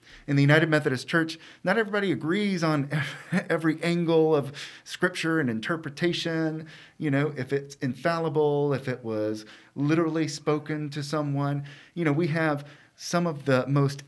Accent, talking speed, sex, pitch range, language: American, 150 wpm, male, 125-160 Hz, English